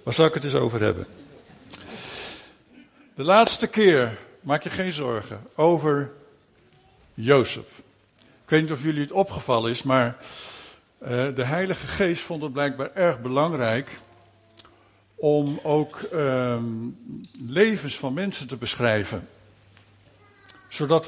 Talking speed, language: 120 wpm, Dutch